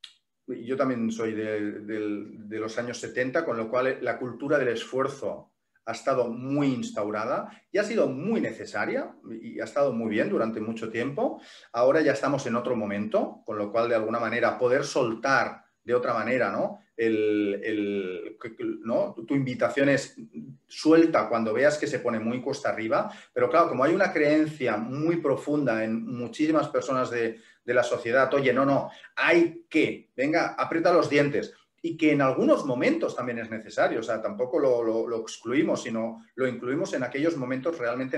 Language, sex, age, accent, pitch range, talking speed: Spanish, male, 30-49, Spanish, 110-140 Hz, 175 wpm